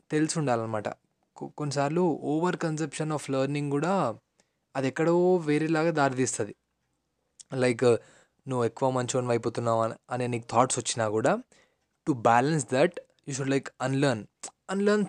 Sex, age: male, 20-39